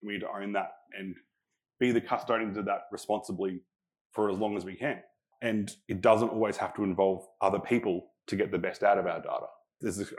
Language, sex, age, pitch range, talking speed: English, male, 30-49, 100-120 Hz, 220 wpm